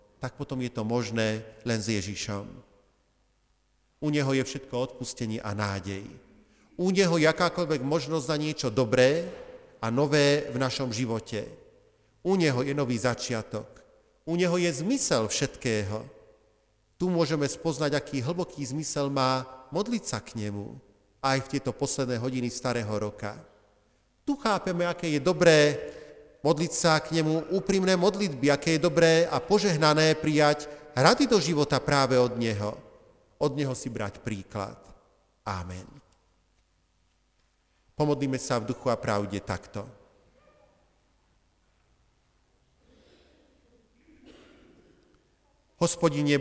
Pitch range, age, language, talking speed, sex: 110-155 Hz, 40-59, Slovak, 120 wpm, male